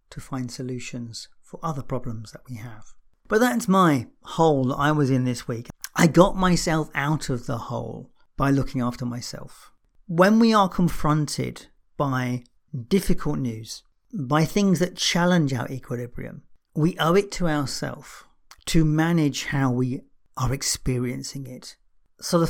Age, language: 50-69, English